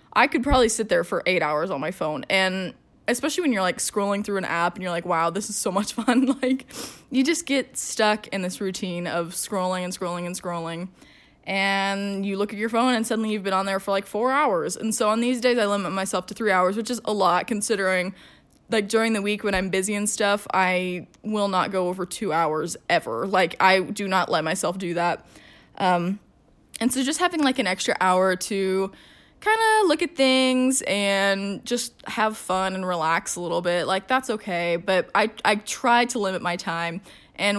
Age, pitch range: 10-29, 185-240 Hz